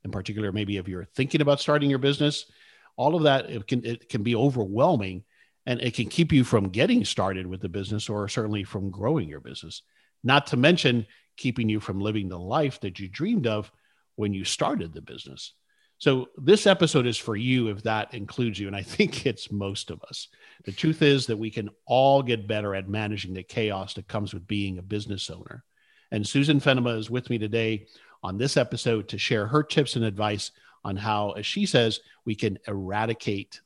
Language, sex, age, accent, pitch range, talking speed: English, male, 50-69, American, 105-135 Hz, 200 wpm